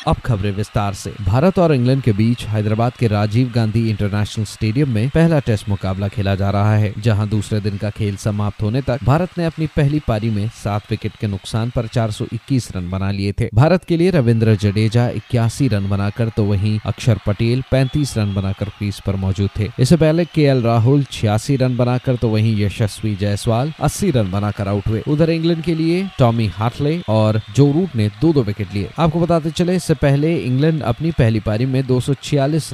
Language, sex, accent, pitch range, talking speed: Hindi, male, native, 105-140 Hz, 195 wpm